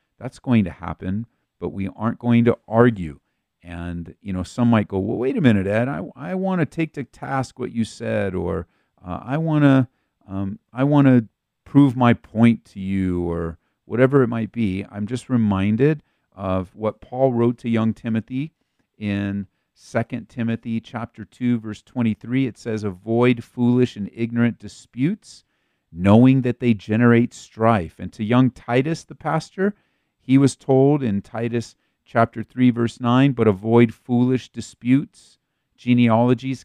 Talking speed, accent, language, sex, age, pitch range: 160 wpm, American, English, male, 40-59, 105-130 Hz